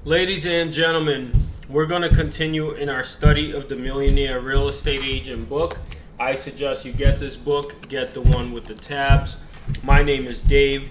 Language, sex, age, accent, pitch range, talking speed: English, male, 20-39, American, 125-145 Hz, 180 wpm